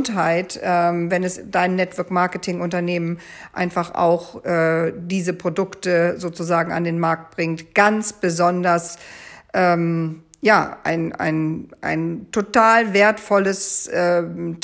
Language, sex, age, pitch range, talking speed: German, female, 50-69, 170-205 Hz, 100 wpm